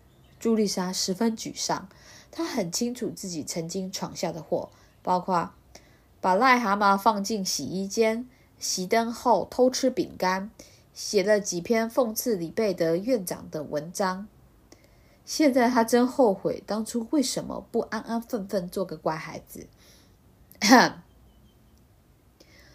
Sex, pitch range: female, 180-235 Hz